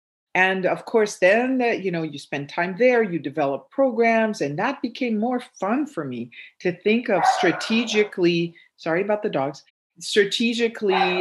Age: 40-59